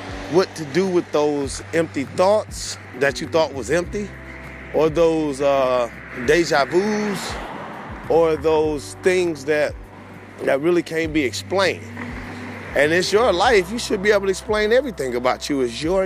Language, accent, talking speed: English, American, 155 wpm